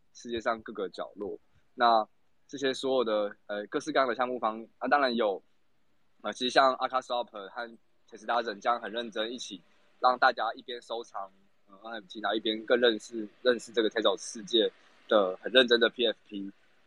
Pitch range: 105-125 Hz